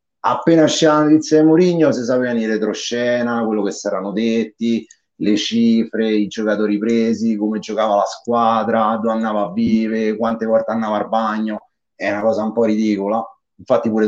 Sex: male